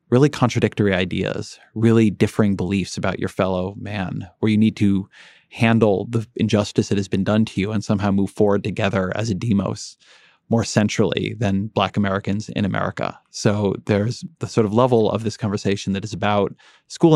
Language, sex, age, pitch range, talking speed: English, male, 30-49, 95-110 Hz, 180 wpm